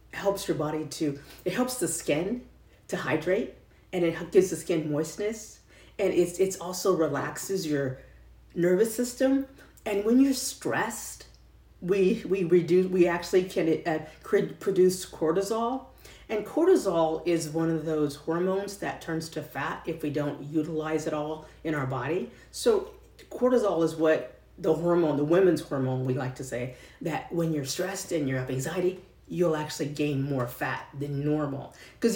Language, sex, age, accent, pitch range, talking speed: English, female, 40-59, American, 150-195 Hz, 160 wpm